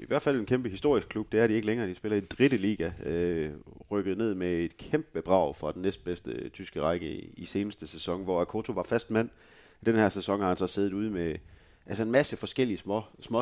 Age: 30-49